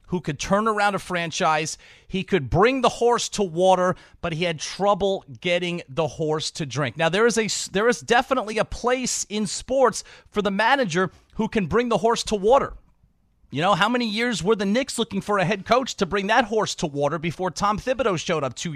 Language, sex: English, male